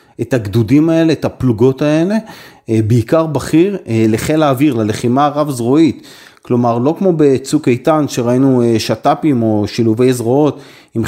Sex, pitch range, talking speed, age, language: male, 120-150 Hz, 130 wpm, 30-49, Hebrew